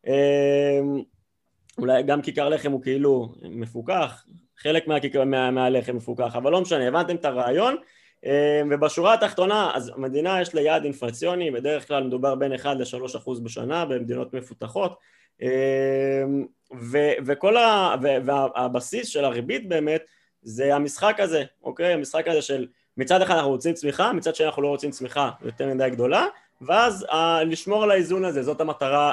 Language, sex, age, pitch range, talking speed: Hebrew, male, 20-39, 130-160 Hz, 150 wpm